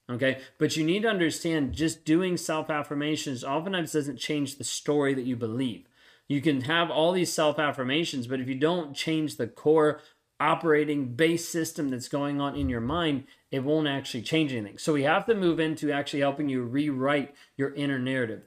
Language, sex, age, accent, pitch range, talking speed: English, male, 30-49, American, 135-160 Hz, 190 wpm